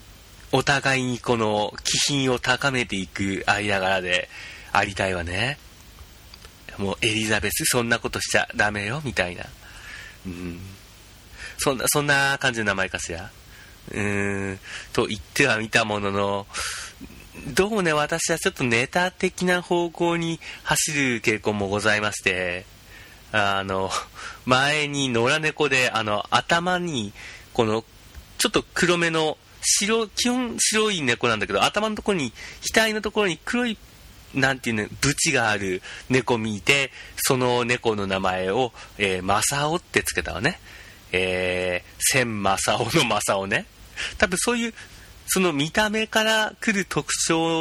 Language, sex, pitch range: Japanese, male, 100-155 Hz